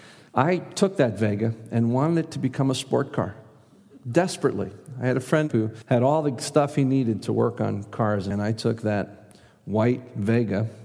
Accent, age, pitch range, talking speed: American, 50-69, 105-130 Hz, 190 wpm